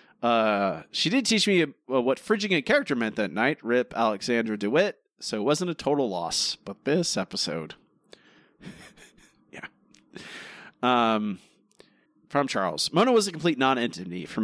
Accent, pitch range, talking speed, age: American, 115-165 Hz, 145 wpm, 30-49